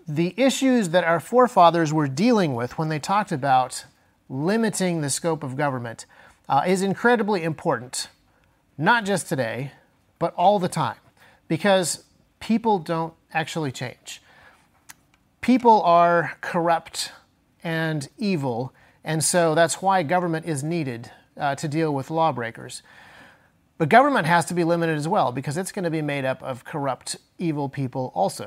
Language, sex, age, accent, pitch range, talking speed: English, male, 30-49, American, 140-190 Hz, 150 wpm